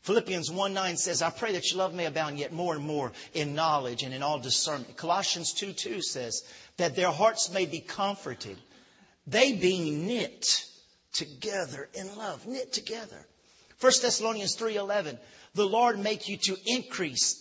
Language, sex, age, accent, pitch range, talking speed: English, male, 50-69, American, 145-200 Hz, 170 wpm